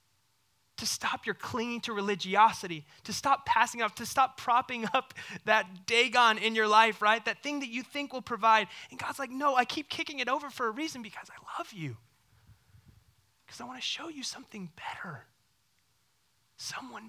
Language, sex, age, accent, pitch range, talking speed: English, male, 20-39, American, 130-215 Hz, 185 wpm